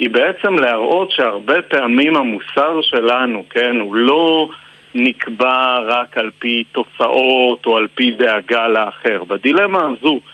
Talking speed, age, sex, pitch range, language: 130 wpm, 50-69, male, 115-155 Hz, Hebrew